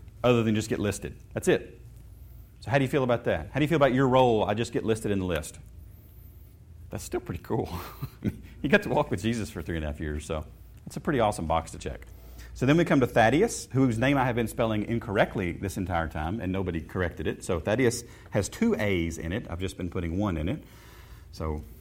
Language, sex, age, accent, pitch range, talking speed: English, male, 40-59, American, 90-120 Hz, 240 wpm